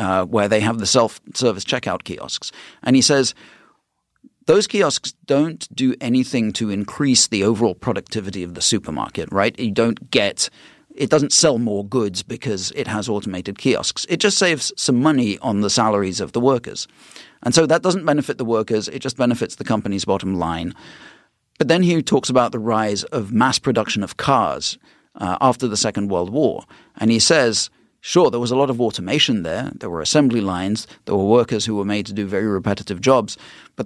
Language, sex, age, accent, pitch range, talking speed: English, male, 40-59, British, 100-130 Hz, 190 wpm